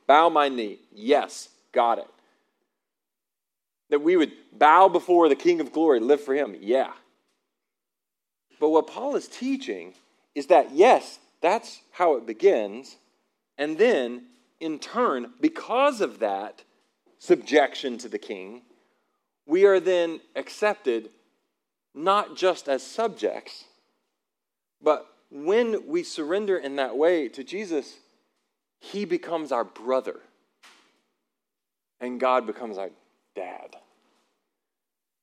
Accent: American